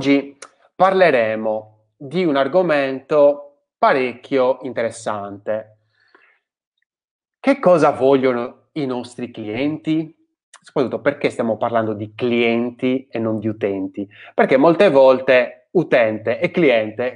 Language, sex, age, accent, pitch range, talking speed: Italian, male, 20-39, native, 110-160 Hz, 100 wpm